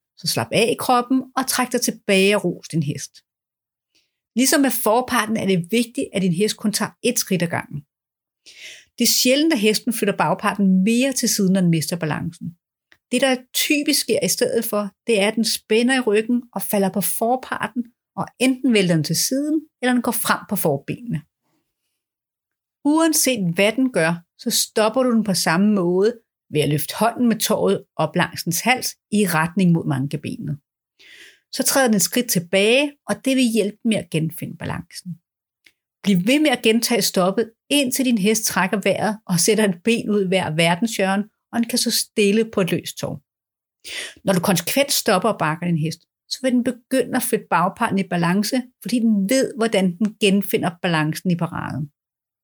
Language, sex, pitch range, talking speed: Danish, female, 180-245 Hz, 185 wpm